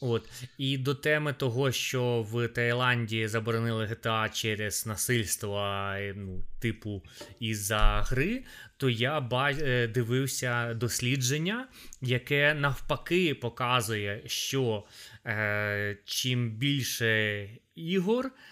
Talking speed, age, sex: 90 wpm, 20-39, male